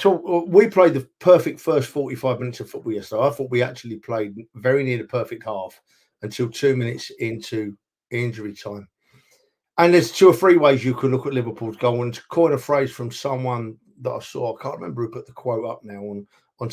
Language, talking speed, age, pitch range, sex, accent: English, 215 wpm, 50-69, 120-150 Hz, male, British